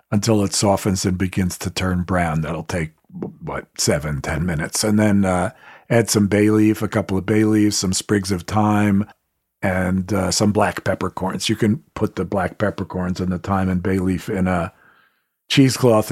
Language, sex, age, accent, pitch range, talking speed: English, male, 50-69, American, 95-110 Hz, 185 wpm